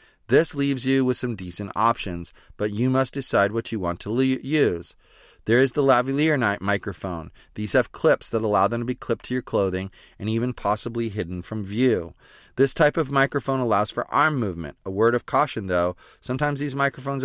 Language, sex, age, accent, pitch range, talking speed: English, male, 30-49, American, 100-135 Hz, 195 wpm